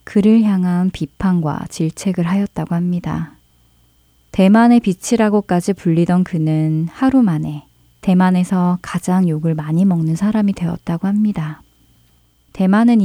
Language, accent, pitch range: Korean, native, 160-205 Hz